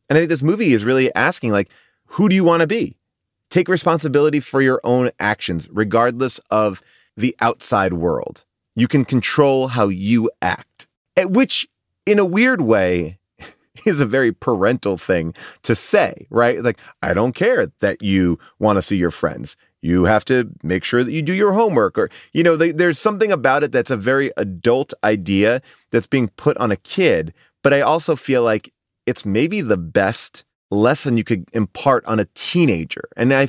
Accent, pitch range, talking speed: American, 110-160 Hz, 185 wpm